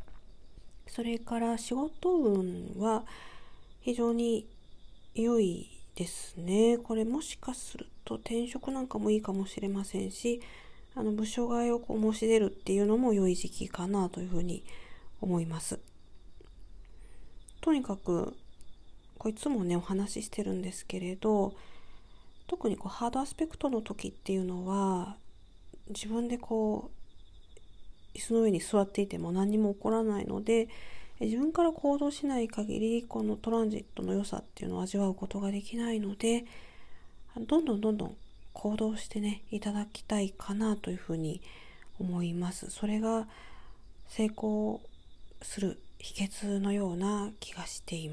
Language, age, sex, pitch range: Japanese, 40-59, female, 195-230 Hz